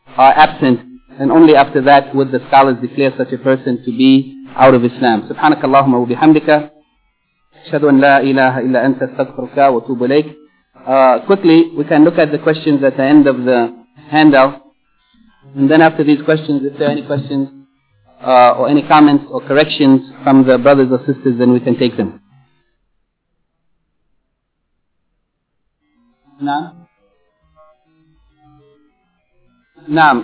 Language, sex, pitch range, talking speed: English, male, 135-160 Hz, 135 wpm